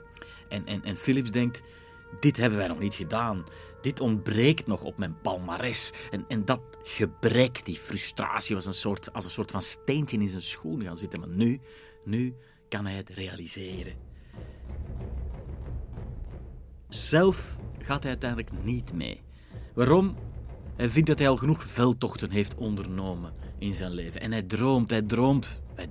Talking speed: 155 wpm